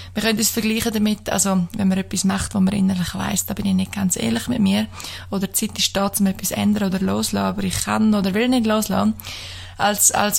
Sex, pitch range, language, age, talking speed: female, 185-210 Hz, German, 20-39, 235 wpm